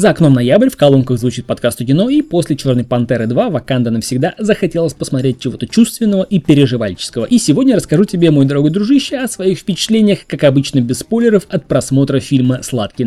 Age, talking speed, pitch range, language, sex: 20-39, 185 wpm, 130-195 Hz, Russian, male